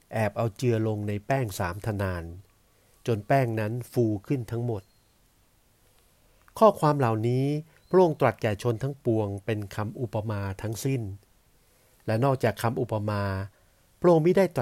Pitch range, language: 100-130 Hz, Thai